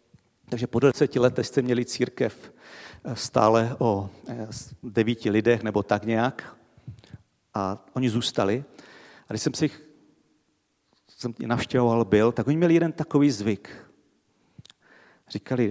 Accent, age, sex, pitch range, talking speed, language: native, 50-69, male, 110-135 Hz, 120 wpm, Czech